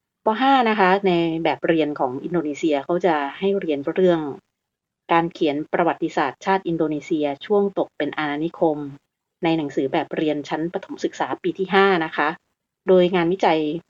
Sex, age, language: female, 30-49, Thai